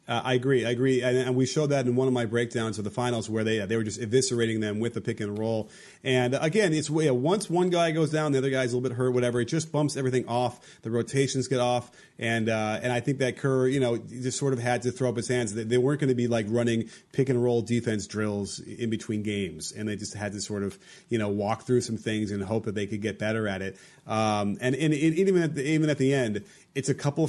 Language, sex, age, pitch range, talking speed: English, male, 30-49, 115-140 Hz, 275 wpm